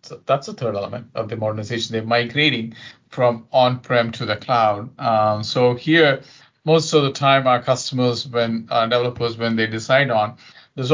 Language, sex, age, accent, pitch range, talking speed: English, male, 50-69, Indian, 115-130 Hz, 175 wpm